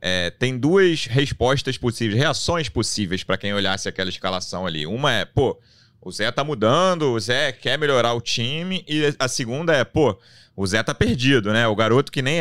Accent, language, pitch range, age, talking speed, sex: Brazilian, Portuguese, 105-140 Hz, 30-49, 195 wpm, male